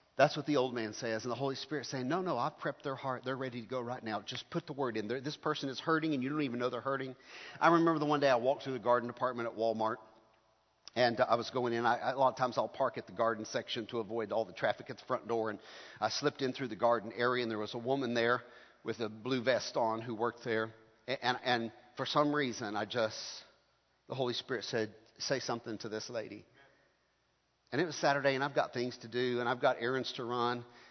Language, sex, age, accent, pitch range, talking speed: English, male, 50-69, American, 115-130 Hz, 260 wpm